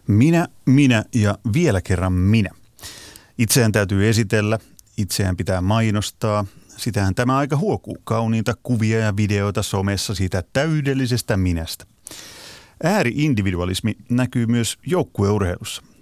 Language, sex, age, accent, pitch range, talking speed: Finnish, male, 30-49, native, 105-125 Hz, 105 wpm